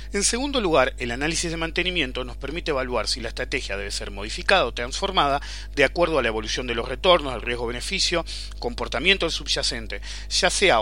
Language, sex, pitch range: English, male, 135-195 Hz